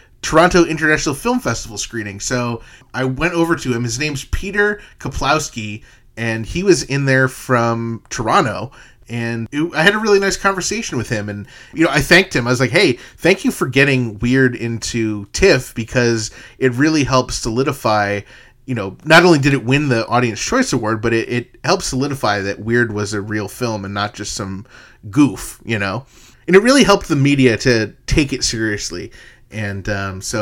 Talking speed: 185 wpm